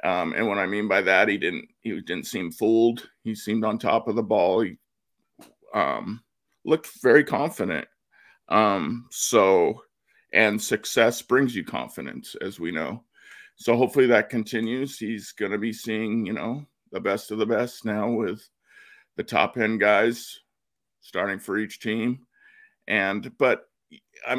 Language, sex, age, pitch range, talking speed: English, male, 50-69, 110-140 Hz, 155 wpm